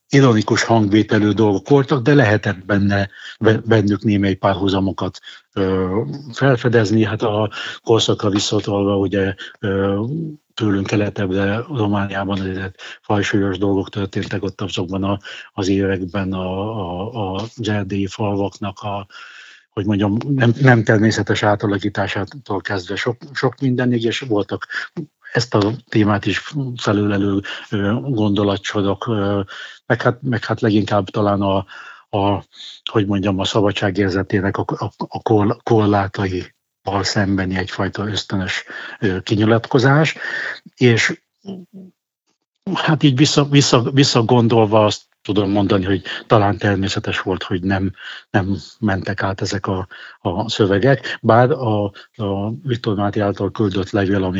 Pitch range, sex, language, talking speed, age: 100-115 Hz, male, Hungarian, 115 wpm, 60-79